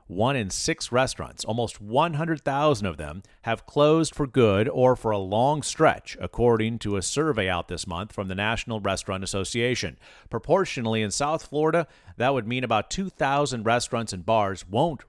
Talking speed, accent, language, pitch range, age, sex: 165 wpm, American, English, 95-125 Hz, 40-59, male